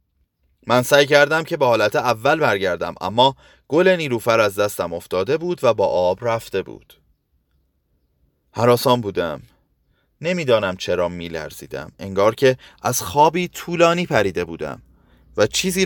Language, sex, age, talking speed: Persian, male, 30-49, 130 wpm